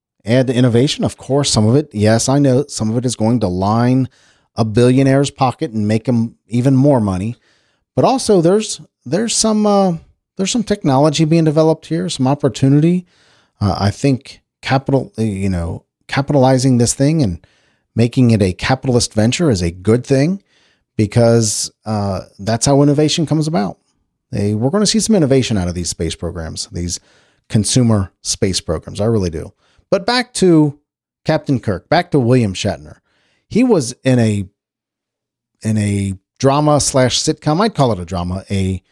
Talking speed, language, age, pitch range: 170 wpm, English, 40-59, 100-140 Hz